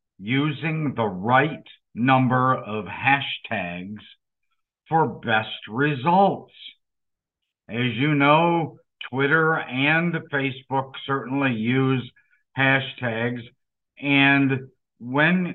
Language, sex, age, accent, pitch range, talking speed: English, male, 50-69, American, 120-145 Hz, 75 wpm